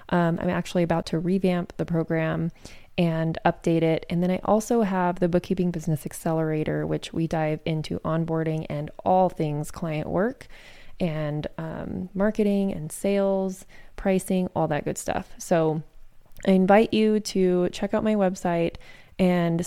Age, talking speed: 20-39, 155 wpm